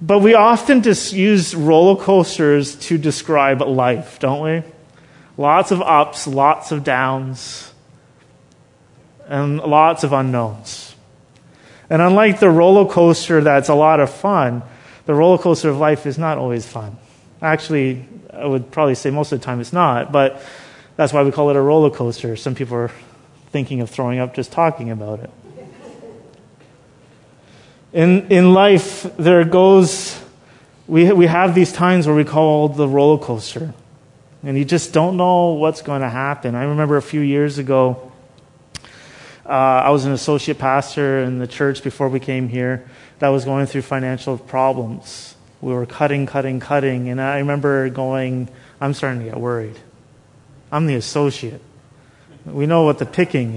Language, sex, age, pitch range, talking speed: English, male, 30-49, 130-160 Hz, 160 wpm